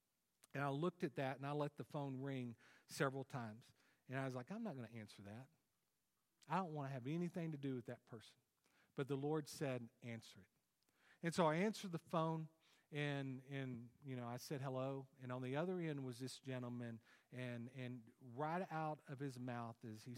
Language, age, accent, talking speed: English, 50-69, American, 210 wpm